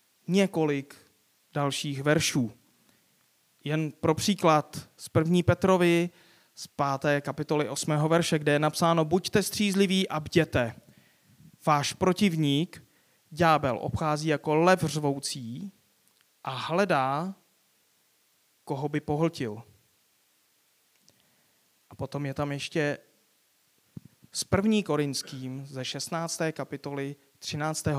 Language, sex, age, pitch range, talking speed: Czech, male, 30-49, 135-165 Hz, 95 wpm